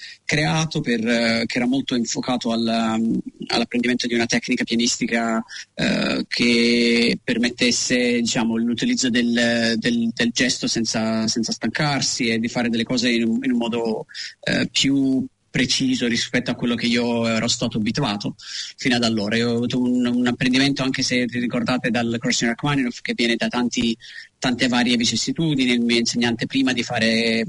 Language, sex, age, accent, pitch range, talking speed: Italian, male, 30-49, native, 115-135 Hz, 165 wpm